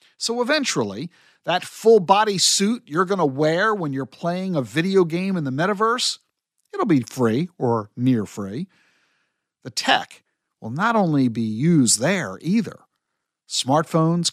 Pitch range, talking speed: 155-220 Hz, 140 wpm